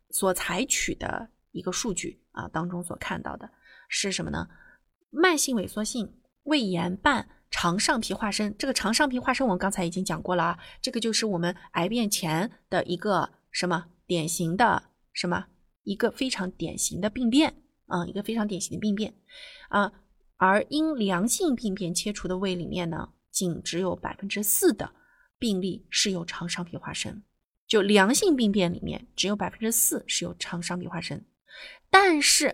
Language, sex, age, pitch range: Chinese, female, 20-39, 180-245 Hz